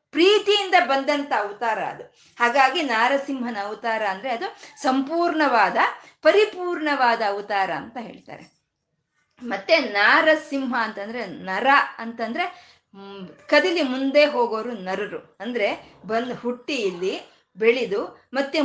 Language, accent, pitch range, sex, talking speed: Kannada, native, 230-330 Hz, female, 95 wpm